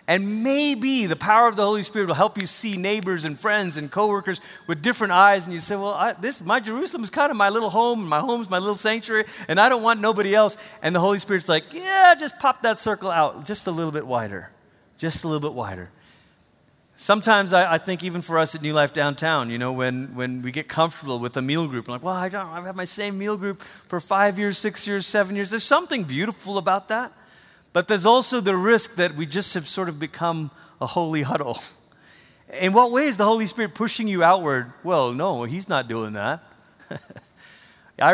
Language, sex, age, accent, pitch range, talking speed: English, male, 30-49, American, 160-215 Hz, 225 wpm